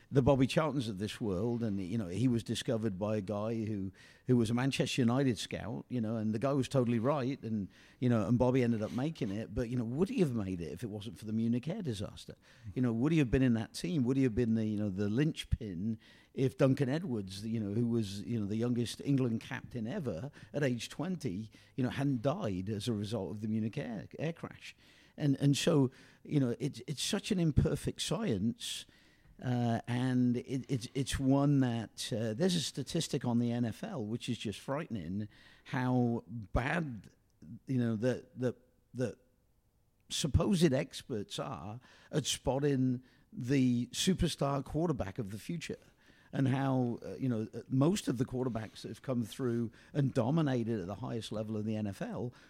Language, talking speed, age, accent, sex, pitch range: English, 195 wpm, 50-69, British, male, 110-135 Hz